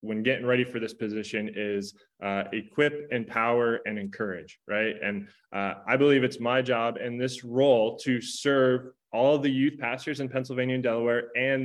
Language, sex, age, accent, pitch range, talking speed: English, male, 20-39, American, 110-130 Hz, 175 wpm